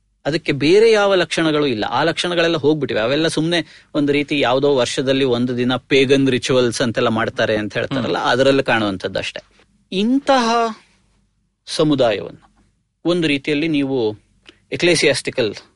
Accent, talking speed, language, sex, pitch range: native, 115 wpm, Kannada, male, 125-170 Hz